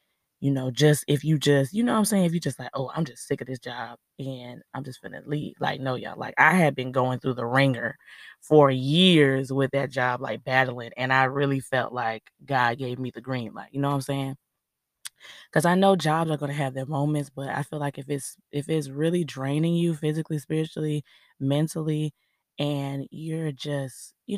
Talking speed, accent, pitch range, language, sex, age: 220 wpm, American, 130-155 Hz, English, female, 20-39